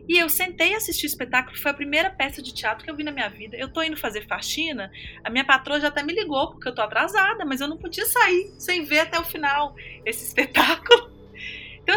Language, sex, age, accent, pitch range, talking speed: Portuguese, female, 20-39, Brazilian, 225-300 Hz, 235 wpm